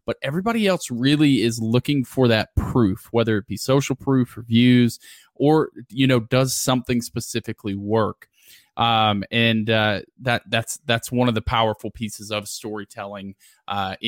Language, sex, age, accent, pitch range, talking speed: English, male, 20-39, American, 105-125 Hz, 160 wpm